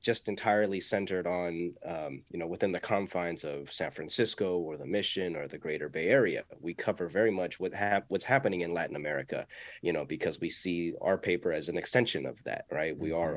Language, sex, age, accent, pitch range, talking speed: English, male, 30-49, American, 85-100 Hz, 210 wpm